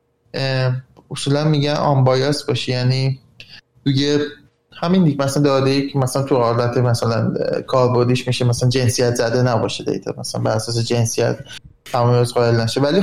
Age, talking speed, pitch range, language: 20-39, 145 wpm, 125-150 Hz, Persian